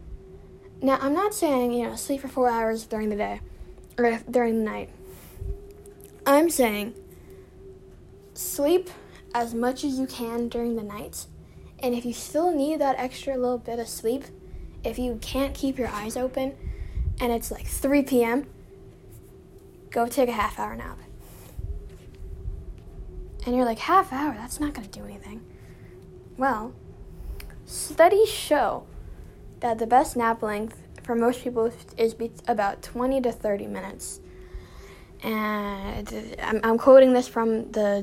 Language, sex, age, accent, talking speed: English, female, 10-29, American, 145 wpm